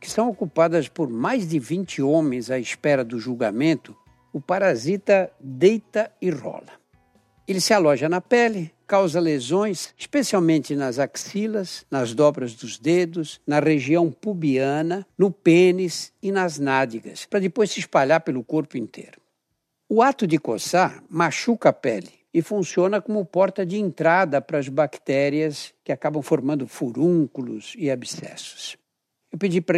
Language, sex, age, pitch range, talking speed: Portuguese, male, 60-79, 145-190 Hz, 145 wpm